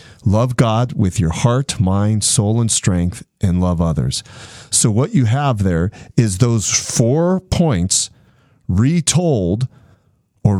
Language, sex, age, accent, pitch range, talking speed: English, male, 40-59, American, 105-145 Hz, 130 wpm